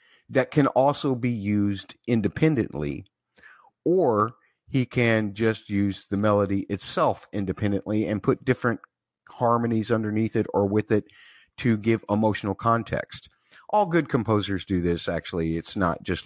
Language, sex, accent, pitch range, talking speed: English, male, American, 95-120 Hz, 135 wpm